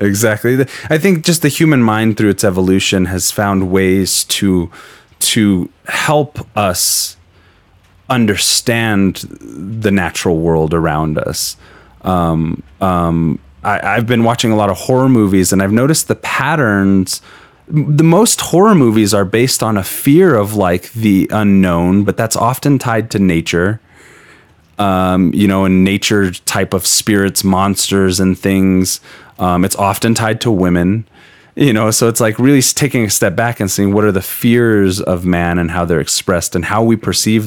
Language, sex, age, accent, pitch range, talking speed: English, male, 30-49, American, 90-115 Hz, 160 wpm